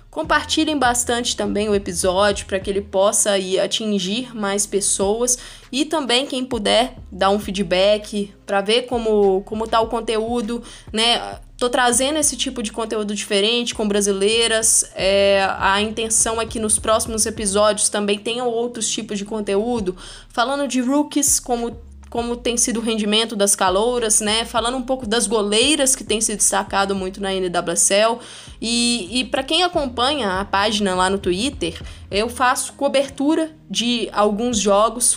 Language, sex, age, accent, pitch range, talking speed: Portuguese, female, 10-29, Brazilian, 200-245 Hz, 155 wpm